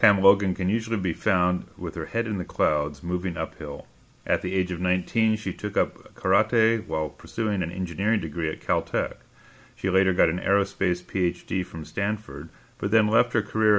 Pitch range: 85-105 Hz